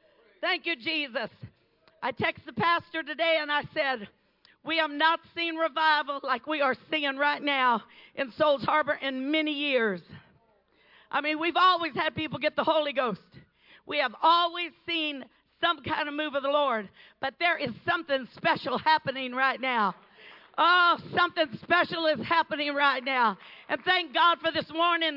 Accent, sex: American, female